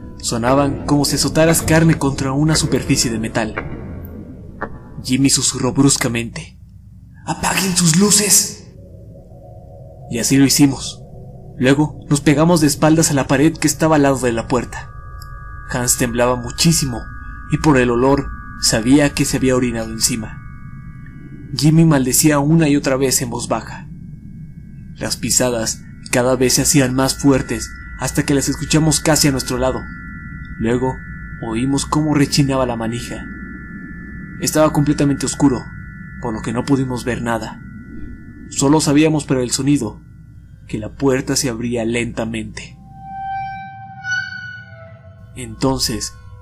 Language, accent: Spanish, Mexican